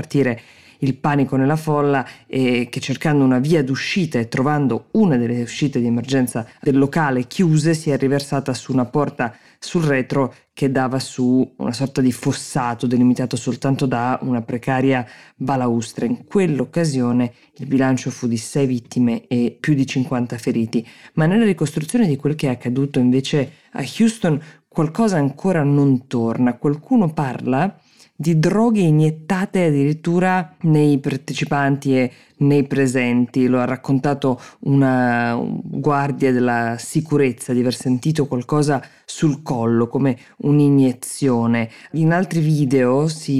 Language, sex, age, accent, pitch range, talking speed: Italian, female, 20-39, native, 125-150 Hz, 135 wpm